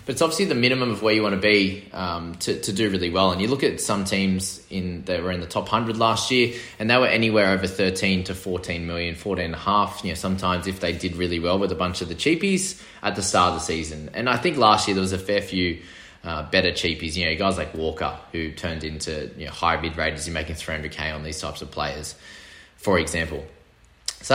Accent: Australian